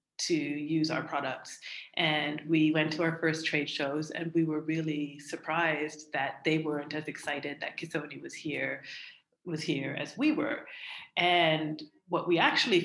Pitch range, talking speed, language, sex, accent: 145-170 Hz, 155 wpm, English, female, American